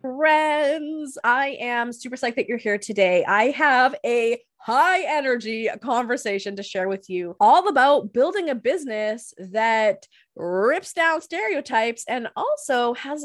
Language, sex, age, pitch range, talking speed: English, female, 20-39, 215-290 Hz, 140 wpm